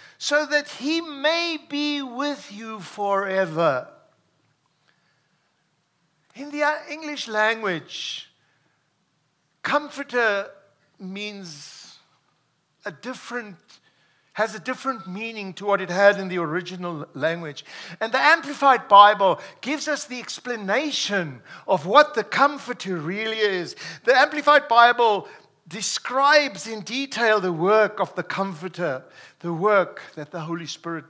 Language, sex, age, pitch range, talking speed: English, male, 60-79, 175-285 Hz, 115 wpm